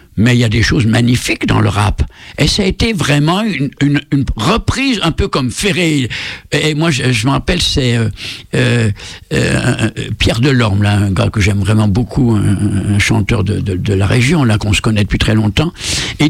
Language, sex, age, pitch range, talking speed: French, male, 60-79, 110-150 Hz, 215 wpm